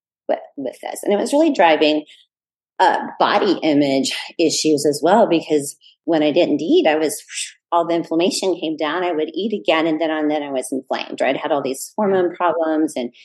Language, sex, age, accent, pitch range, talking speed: English, female, 30-49, American, 155-200 Hz, 200 wpm